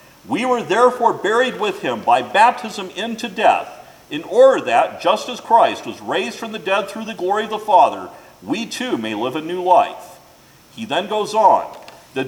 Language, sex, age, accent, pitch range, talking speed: English, male, 50-69, American, 180-230 Hz, 190 wpm